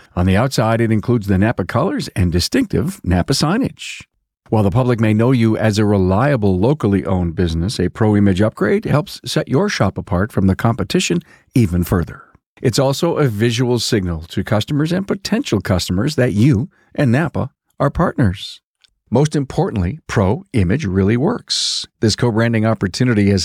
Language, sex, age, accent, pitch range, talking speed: English, male, 50-69, American, 95-135 Hz, 165 wpm